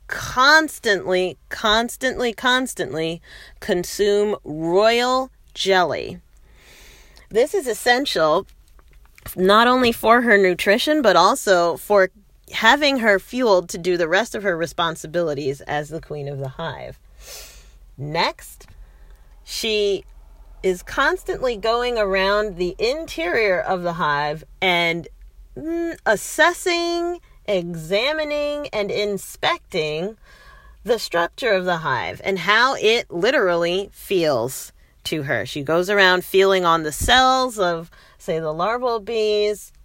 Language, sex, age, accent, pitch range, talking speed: English, female, 40-59, American, 170-240 Hz, 110 wpm